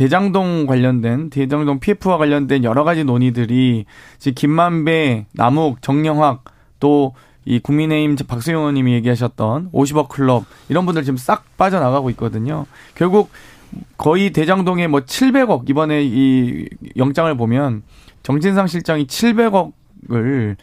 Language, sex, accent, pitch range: Korean, male, native, 125-155 Hz